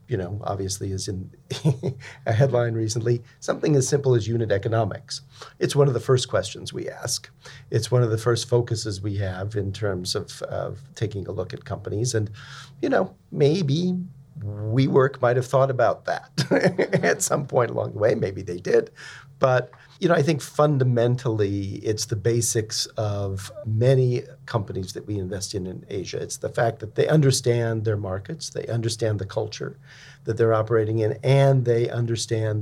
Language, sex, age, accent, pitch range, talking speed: English, male, 50-69, American, 110-135 Hz, 175 wpm